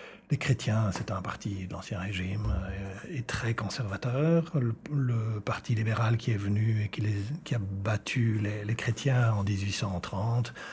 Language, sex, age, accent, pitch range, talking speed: French, male, 60-79, French, 100-130 Hz, 160 wpm